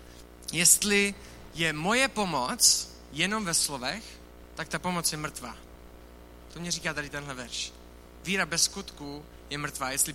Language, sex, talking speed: Czech, male, 140 wpm